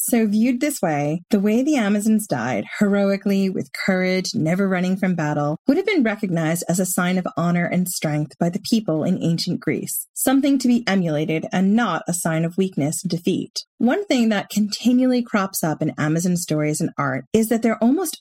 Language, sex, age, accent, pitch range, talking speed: English, female, 30-49, American, 170-225 Hz, 200 wpm